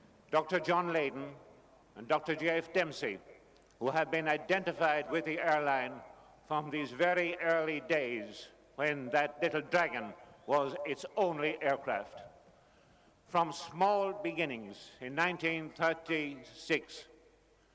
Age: 50-69